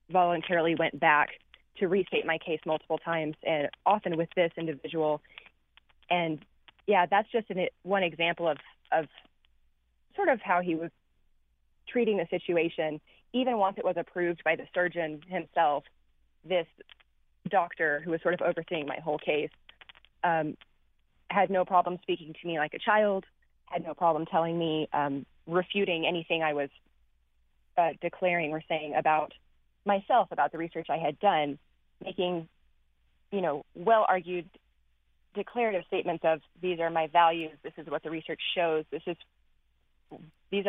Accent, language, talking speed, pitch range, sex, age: American, English, 150 wpm, 150-180 Hz, female, 20-39